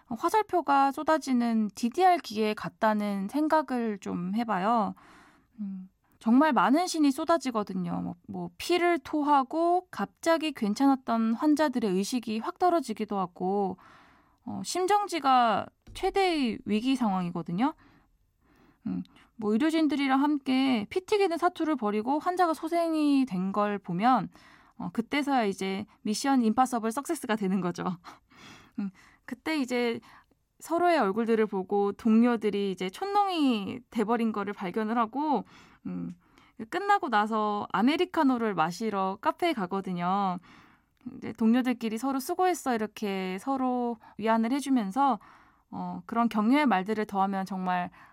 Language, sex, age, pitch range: Korean, female, 20-39, 205-295 Hz